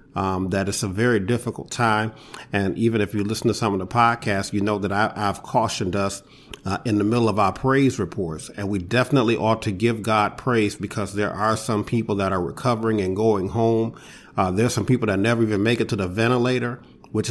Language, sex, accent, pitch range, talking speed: English, male, American, 100-115 Hz, 220 wpm